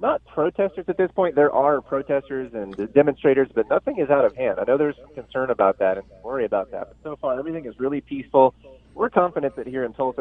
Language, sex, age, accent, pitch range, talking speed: English, male, 30-49, American, 110-145 Hz, 235 wpm